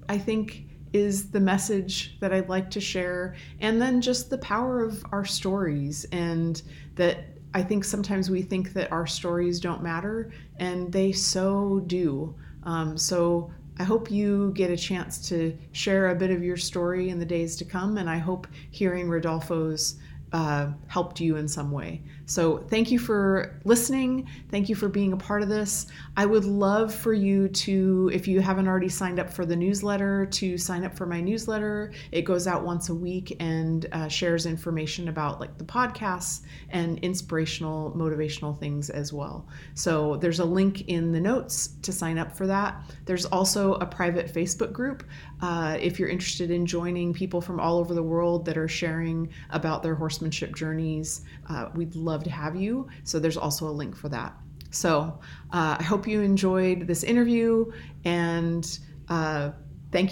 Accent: American